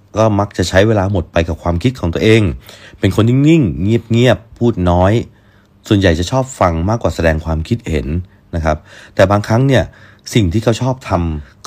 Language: Thai